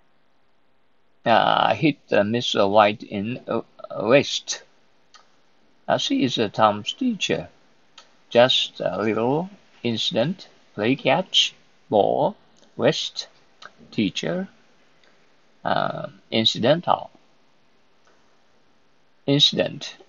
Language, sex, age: Japanese, male, 50-69